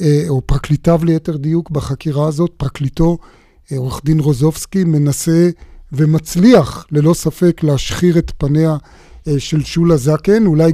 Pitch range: 155-190 Hz